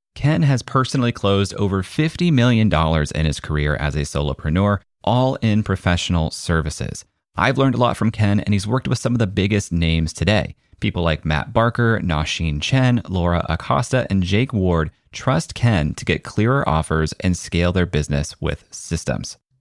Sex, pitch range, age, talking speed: male, 85-115 Hz, 30-49, 170 wpm